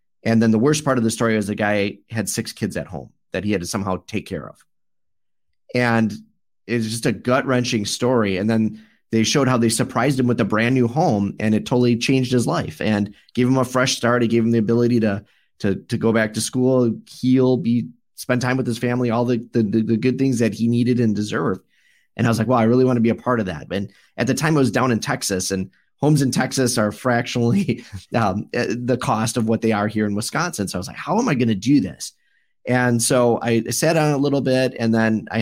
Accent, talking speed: American, 250 wpm